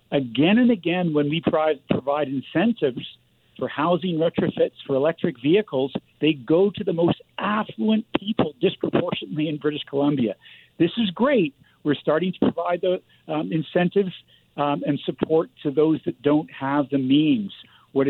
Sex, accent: male, American